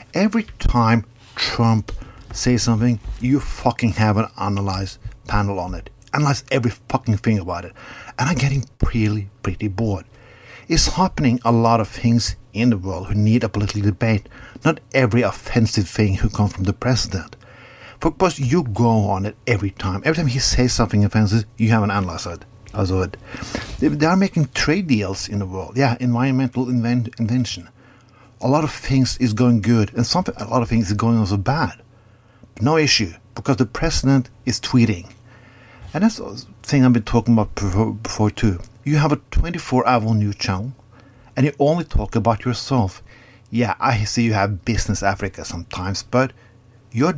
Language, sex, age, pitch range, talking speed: English, male, 60-79, 105-125 Hz, 175 wpm